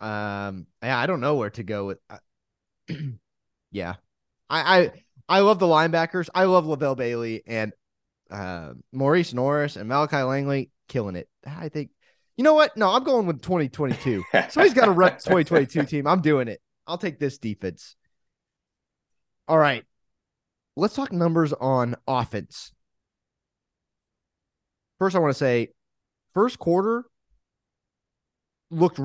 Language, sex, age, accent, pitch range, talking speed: English, male, 20-39, American, 115-165 Hz, 140 wpm